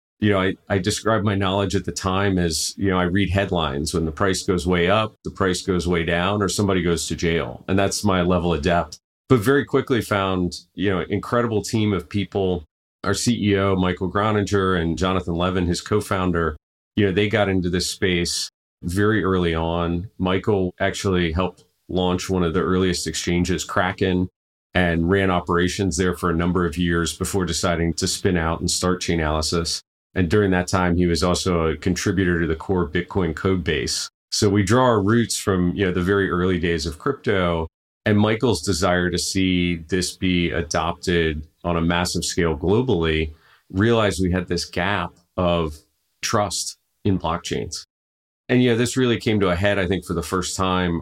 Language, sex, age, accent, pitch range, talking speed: English, male, 40-59, American, 85-100 Hz, 190 wpm